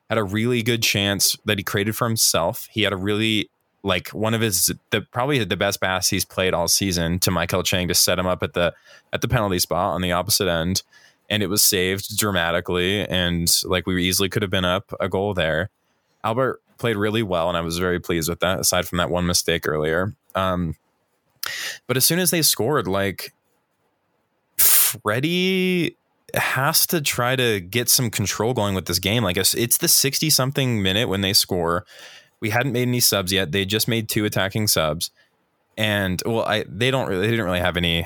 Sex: male